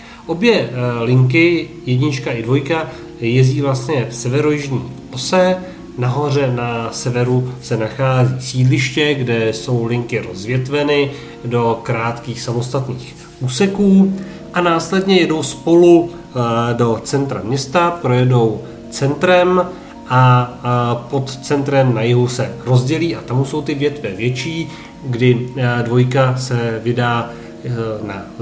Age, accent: 40-59, native